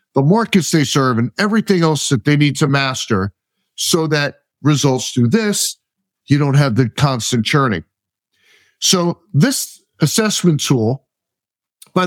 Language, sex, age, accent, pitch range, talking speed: English, male, 50-69, American, 135-180 Hz, 140 wpm